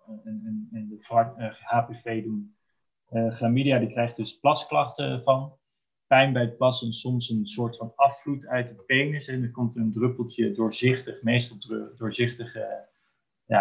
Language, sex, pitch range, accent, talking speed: Dutch, male, 120-145 Hz, Dutch, 140 wpm